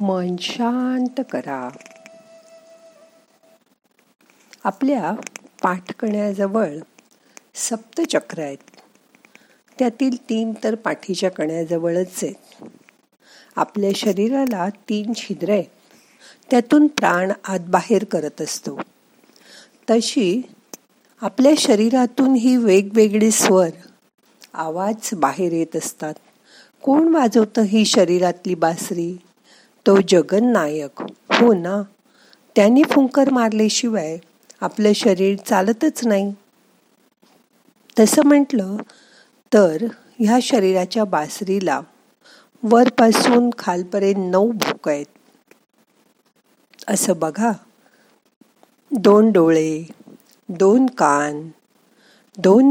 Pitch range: 185-250 Hz